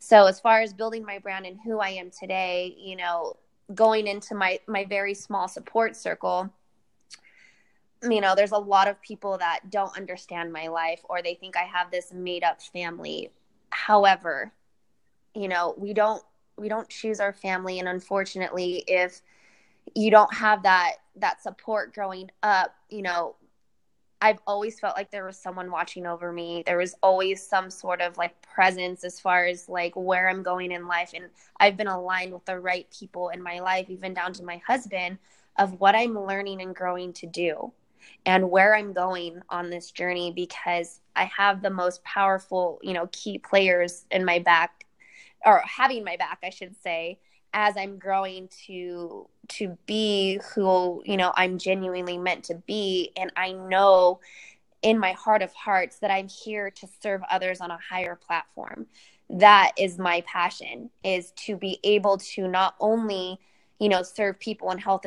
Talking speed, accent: 180 wpm, American